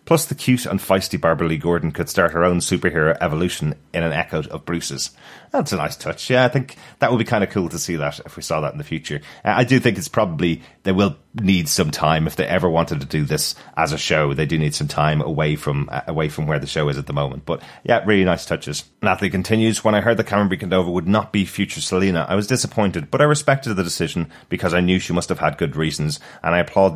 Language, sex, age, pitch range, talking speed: English, male, 30-49, 85-105 Hz, 260 wpm